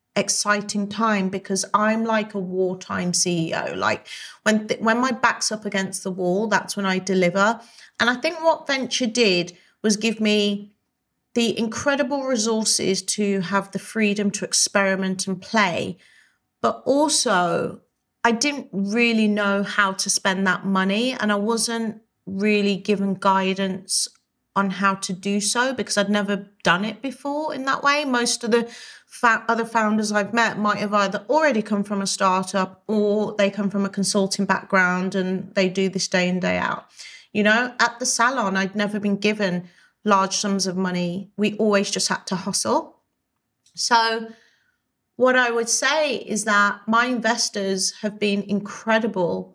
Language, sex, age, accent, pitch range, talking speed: English, female, 40-59, British, 190-225 Hz, 160 wpm